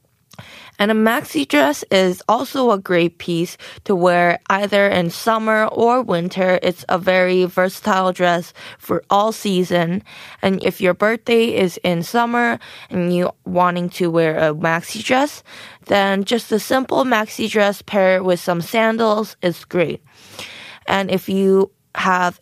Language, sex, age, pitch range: Korean, female, 20-39, 175-220 Hz